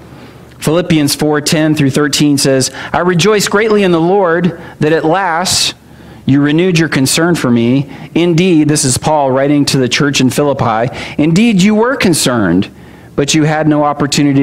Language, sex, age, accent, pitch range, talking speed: English, male, 40-59, American, 150-200 Hz, 165 wpm